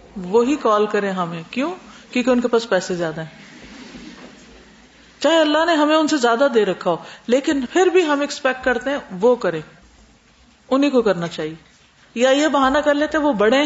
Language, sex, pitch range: Urdu, female, 195-265 Hz